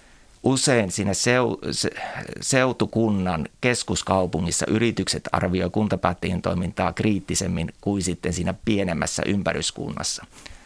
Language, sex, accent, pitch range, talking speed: Finnish, male, native, 90-105 Hz, 80 wpm